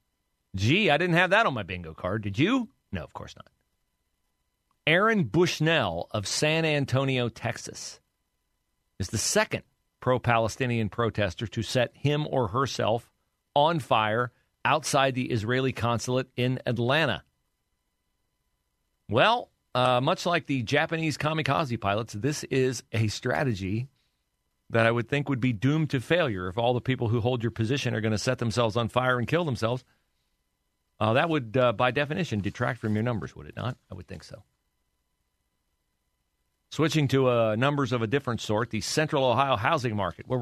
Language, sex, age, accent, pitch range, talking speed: English, male, 40-59, American, 95-130 Hz, 160 wpm